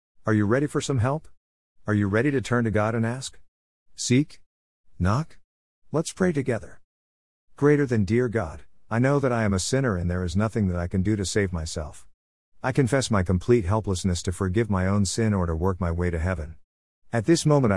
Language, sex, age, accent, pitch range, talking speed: English, male, 50-69, American, 85-115 Hz, 210 wpm